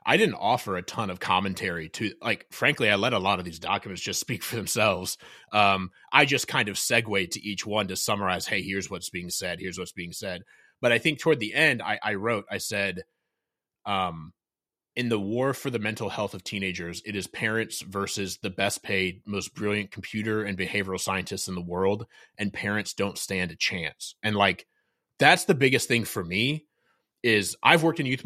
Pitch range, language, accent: 95-120 Hz, English, American